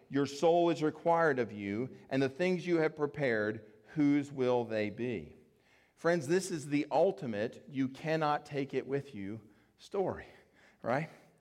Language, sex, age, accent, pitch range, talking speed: English, male, 40-59, American, 110-150 Hz, 155 wpm